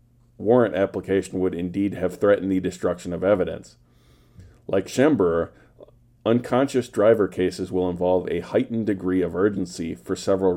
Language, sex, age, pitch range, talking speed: English, male, 40-59, 90-115 Hz, 135 wpm